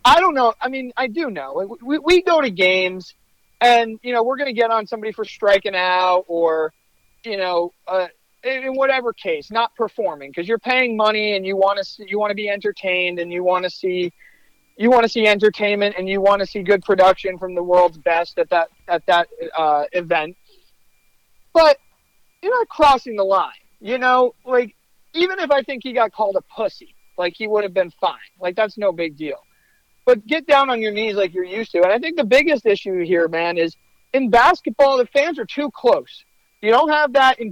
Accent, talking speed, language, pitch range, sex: American, 220 wpm, English, 180-250 Hz, male